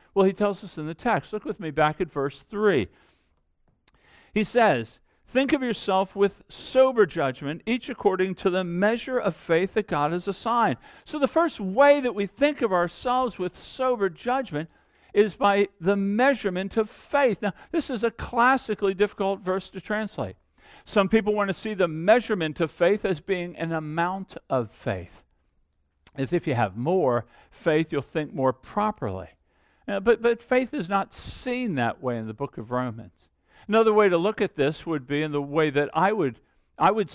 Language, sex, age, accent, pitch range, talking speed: English, male, 50-69, American, 150-215 Hz, 185 wpm